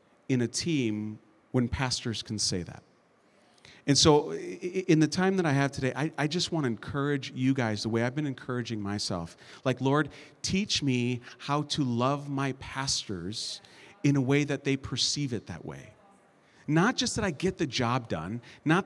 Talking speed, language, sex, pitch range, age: 180 wpm, English, male, 120-150 Hz, 40-59